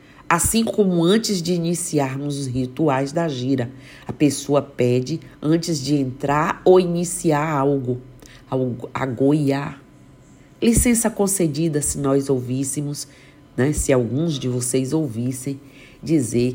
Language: Portuguese